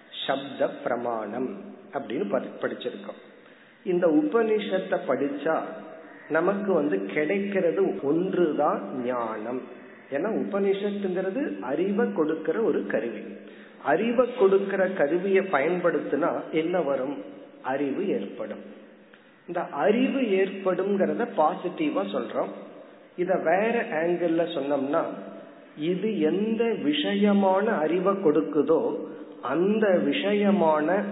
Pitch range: 165-205 Hz